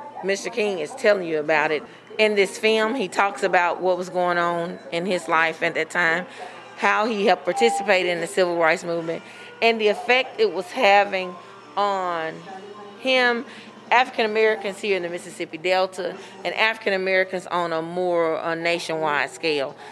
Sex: female